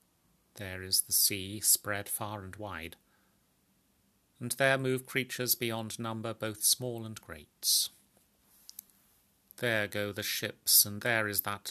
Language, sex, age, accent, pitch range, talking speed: English, male, 30-49, British, 95-115 Hz, 135 wpm